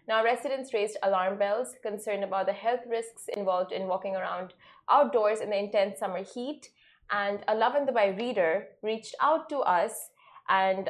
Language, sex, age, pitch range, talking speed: Arabic, female, 20-39, 195-240 Hz, 175 wpm